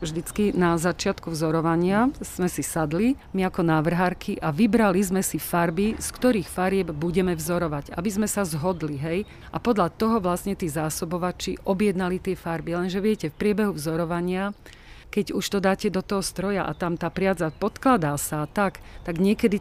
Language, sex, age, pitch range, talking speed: Slovak, female, 40-59, 175-205 Hz, 170 wpm